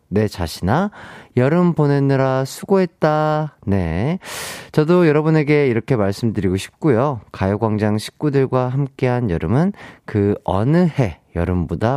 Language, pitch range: Korean, 105-155 Hz